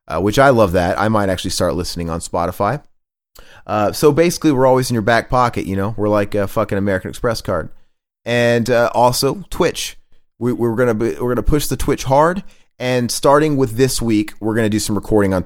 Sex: male